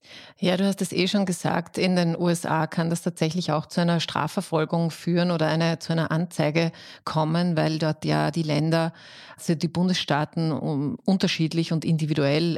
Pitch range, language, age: 155-170 Hz, German, 30-49